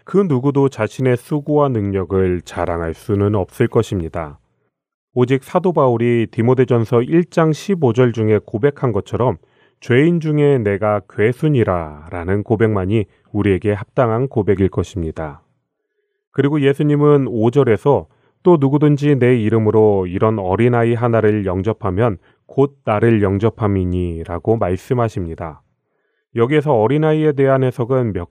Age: 30-49